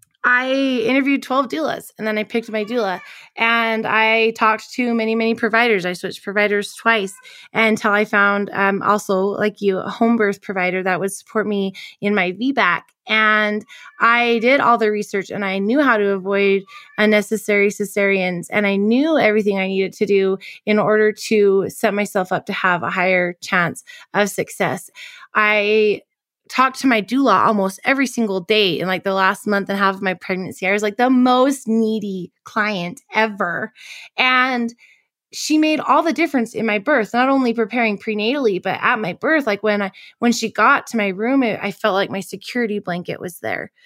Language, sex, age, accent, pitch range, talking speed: English, female, 20-39, American, 200-235 Hz, 185 wpm